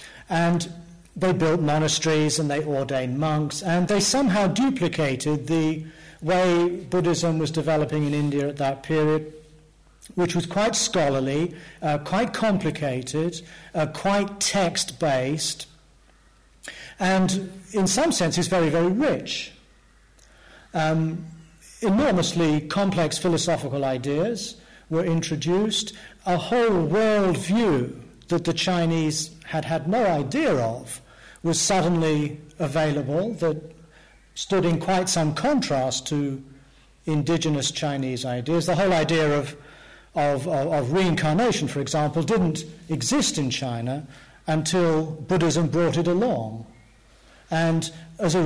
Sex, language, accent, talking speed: male, English, British, 115 wpm